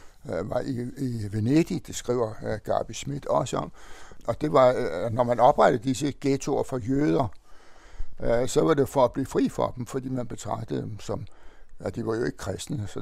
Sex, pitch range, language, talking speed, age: male, 115-140 Hz, Danish, 185 wpm, 60-79